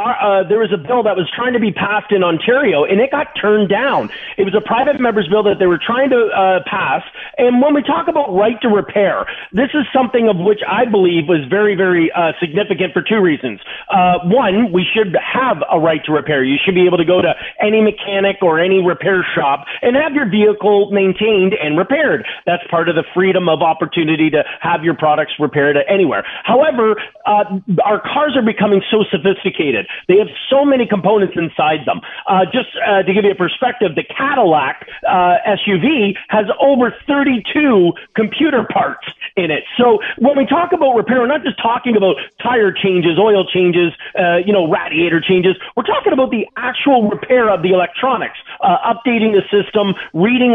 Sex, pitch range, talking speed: male, 185-245 Hz, 195 wpm